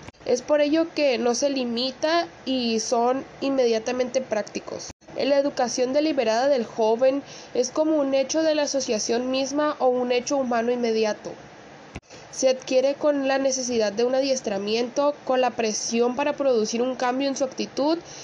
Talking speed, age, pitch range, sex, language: 155 wpm, 20-39, 235-280 Hz, female, Spanish